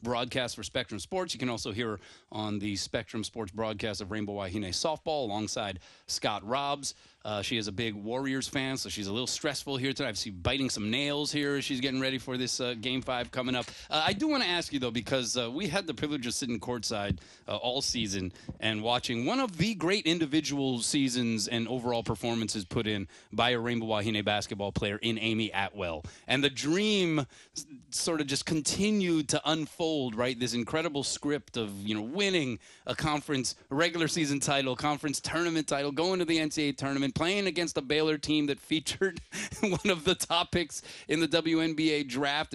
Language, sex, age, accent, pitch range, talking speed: English, male, 30-49, American, 115-160 Hz, 195 wpm